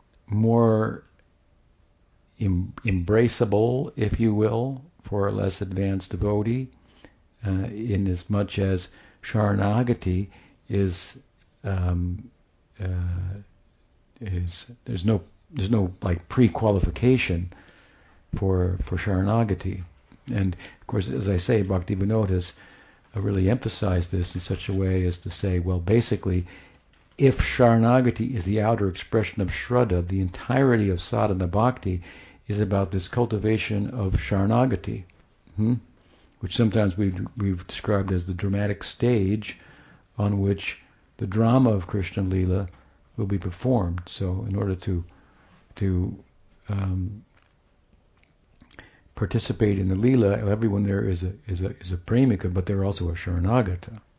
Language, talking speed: English, 125 wpm